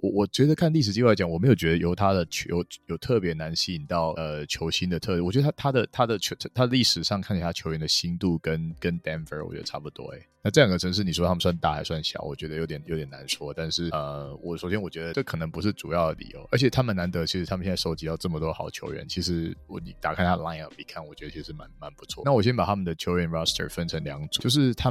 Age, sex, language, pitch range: 20-39, male, Chinese, 80-100 Hz